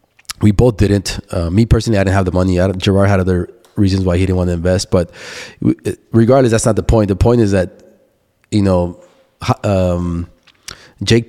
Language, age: English, 20-39